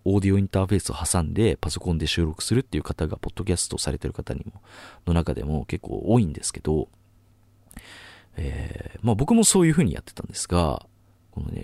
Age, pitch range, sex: 40-59, 80-110 Hz, male